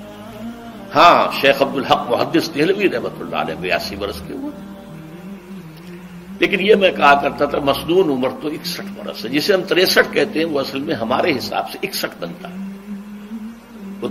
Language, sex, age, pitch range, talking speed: Urdu, male, 60-79, 140-205 Hz, 170 wpm